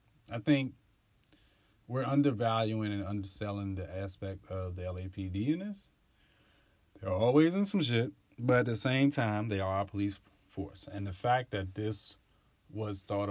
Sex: male